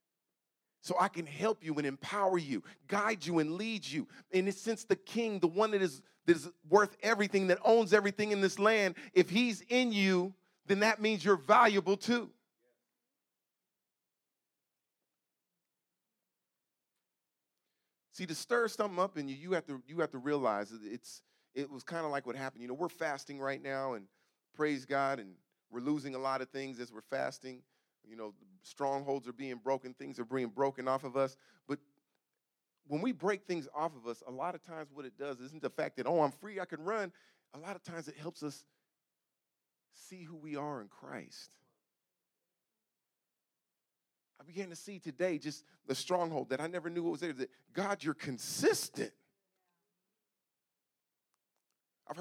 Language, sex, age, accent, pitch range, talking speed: English, male, 40-59, American, 135-200 Hz, 175 wpm